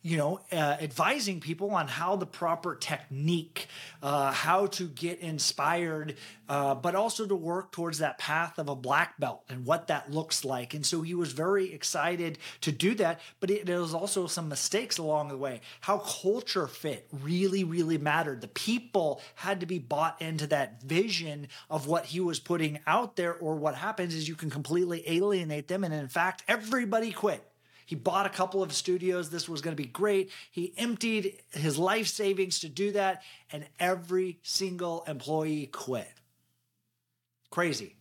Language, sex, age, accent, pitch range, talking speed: English, male, 30-49, American, 150-185 Hz, 175 wpm